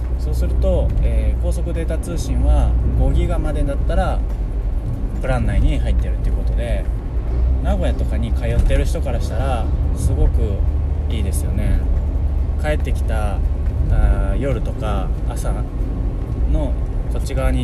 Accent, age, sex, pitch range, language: native, 20-39, male, 65-100 Hz, Japanese